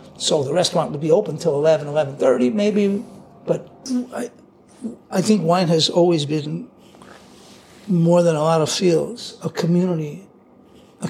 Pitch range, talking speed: 160-225 Hz, 140 wpm